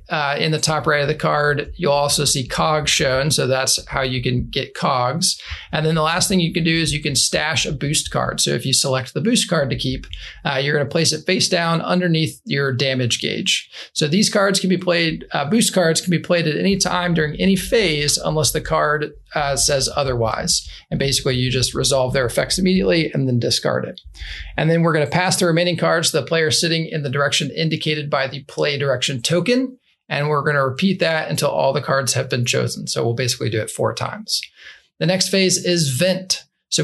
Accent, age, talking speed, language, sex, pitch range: American, 40-59, 225 wpm, English, male, 140-180 Hz